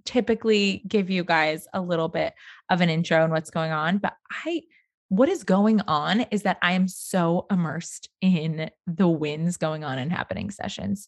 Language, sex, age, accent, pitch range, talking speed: English, female, 20-39, American, 165-240 Hz, 185 wpm